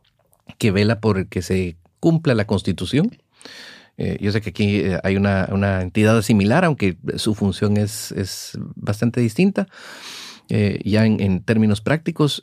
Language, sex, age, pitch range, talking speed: German, male, 40-59, 100-120 Hz, 150 wpm